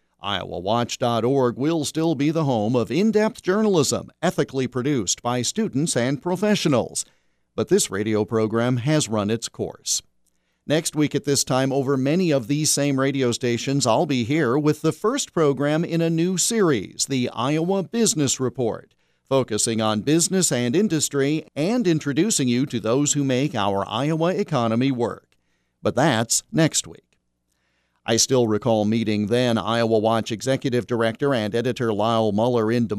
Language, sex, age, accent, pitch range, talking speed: English, male, 50-69, American, 115-150 Hz, 155 wpm